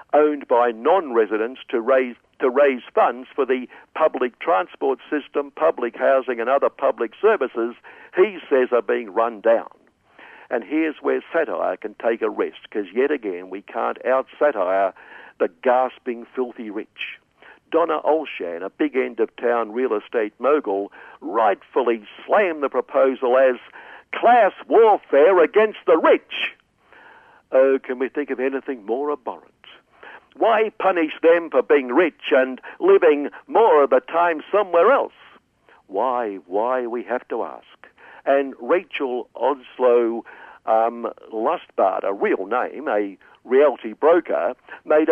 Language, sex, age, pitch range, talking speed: English, male, 60-79, 125-190 Hz, 135 wpm